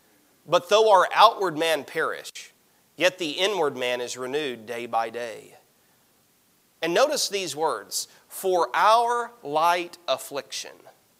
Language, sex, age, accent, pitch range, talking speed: English, male, 40-59, American, 155-215 Hz, 125 wpm